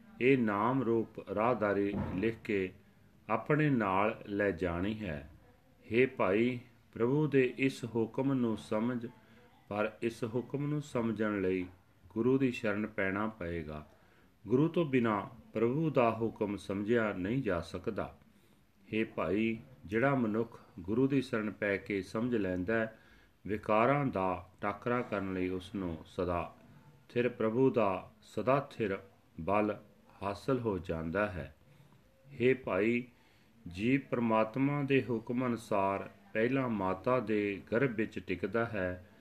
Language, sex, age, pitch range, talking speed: Punjabi, male, 40-59, 100-125 Hz, 110 wpm